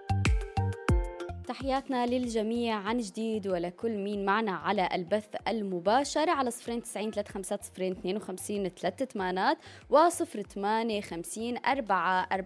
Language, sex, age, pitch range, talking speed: Arabic, female, 20-39, 180-230 Hz, 75 wpm